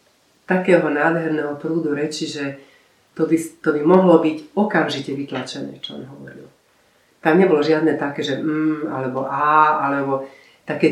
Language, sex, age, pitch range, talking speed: Slovak, female, 40-59, 135-160 Hz, 145 wpm